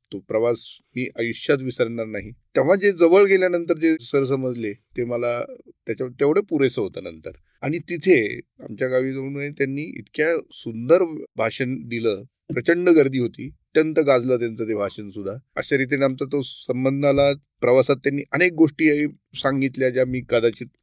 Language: Marathi